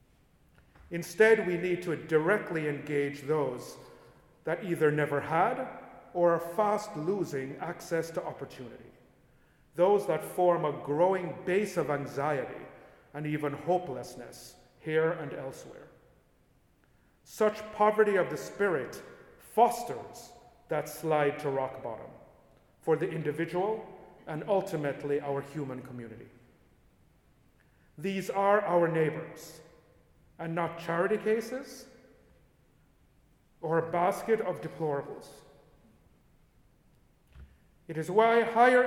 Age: 40-59